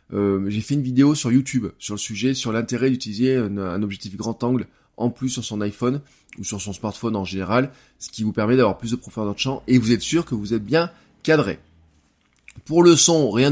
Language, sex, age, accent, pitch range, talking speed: French, male, 20-39, French, 105-130 Hz, 230 wpm